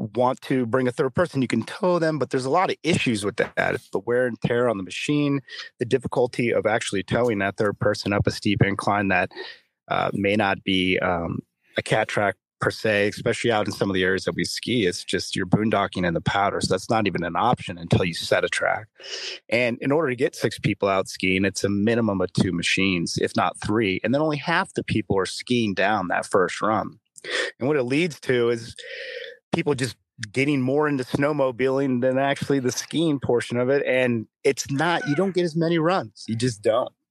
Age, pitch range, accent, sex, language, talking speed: 30-49, 100-135 Hz, American, male, English, 220 wpm